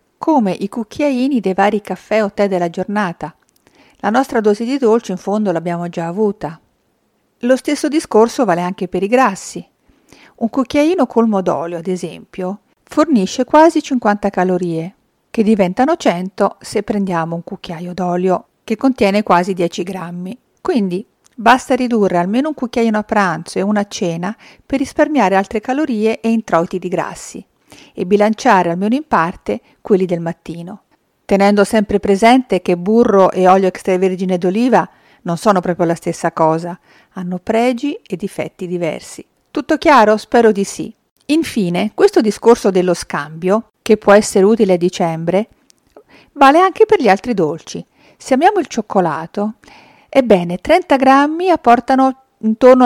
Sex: female